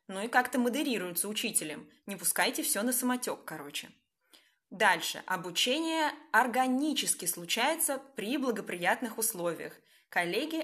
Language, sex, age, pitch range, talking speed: Russian, female, 20-39, 200-285 Hz, 105 wpm